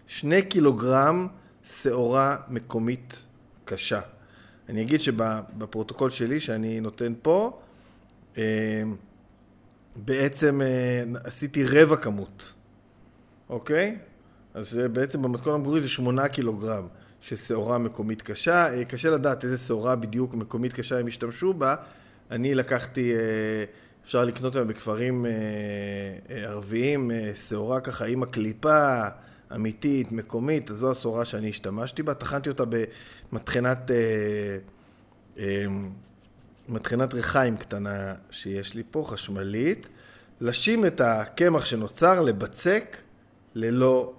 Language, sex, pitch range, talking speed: Hebrew, male, 110-130 Hz, 100 wpm